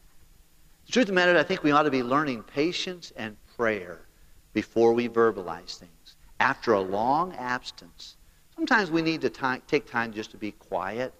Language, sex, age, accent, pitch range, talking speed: English, male, 50-69, American, 95-130 Hz, 175 wpm